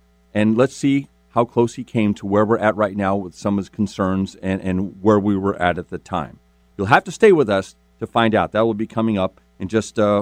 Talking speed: 260 wpm